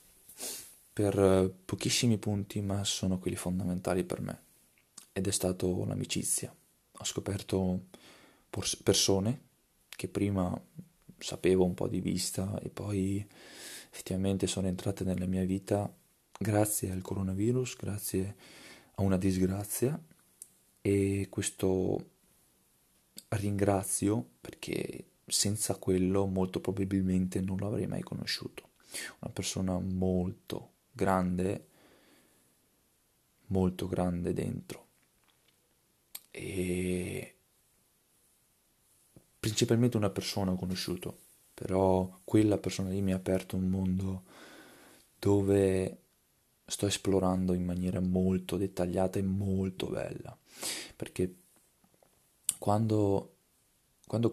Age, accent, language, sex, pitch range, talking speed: 20-39, native, Italian, male, 95-100 Hz, 95 wpm